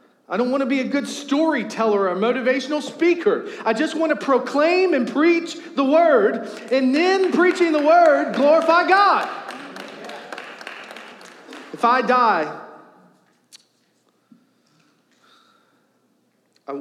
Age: 40-59